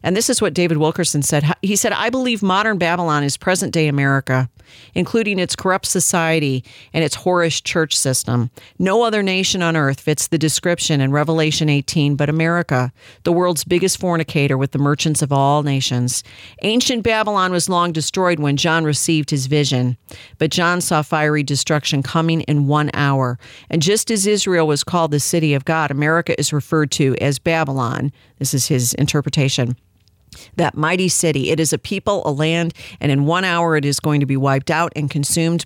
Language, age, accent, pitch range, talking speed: English, 50-69, American, 140-175 Hz, 185 wpm